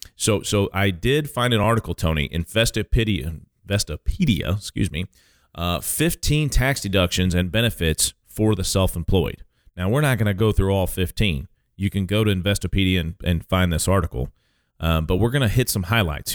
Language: English